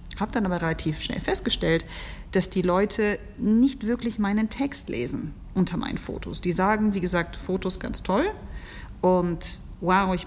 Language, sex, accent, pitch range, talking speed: German, female, German, 170-225 Hz, 160 wpm